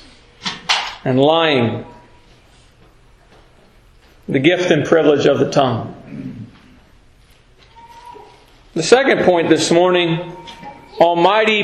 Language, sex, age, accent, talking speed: English, male, 40-59, American, 75 wpm